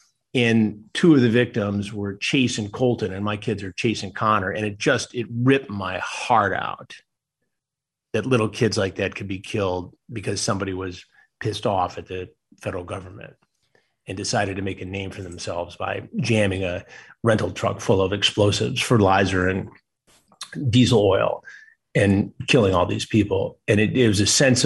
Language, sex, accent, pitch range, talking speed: English, male, American, 105-130 Hz, 175 wpm